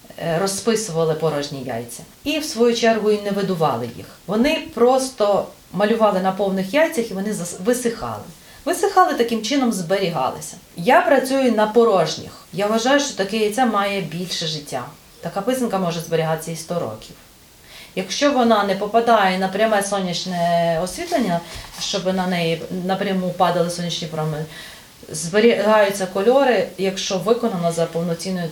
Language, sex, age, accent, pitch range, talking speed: Ukrainian, female, 30-49, native, 170-225 Hz, 135 wpm